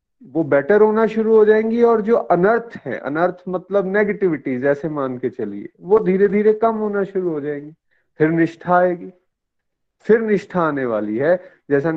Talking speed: 170 wpm